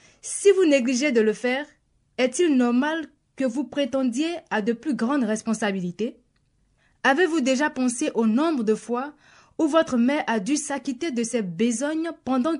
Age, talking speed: 20-39, 155 wpm